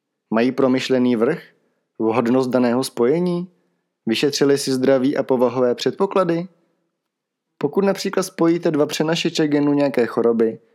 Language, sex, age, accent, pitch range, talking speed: Czech, male, 30-49, native, 115-155 Hz, 110 wpm